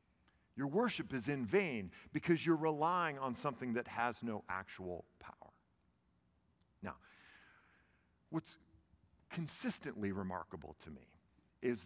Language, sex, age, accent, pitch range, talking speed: English, male, 50-69, American, 100-165 Hz, 110 wpm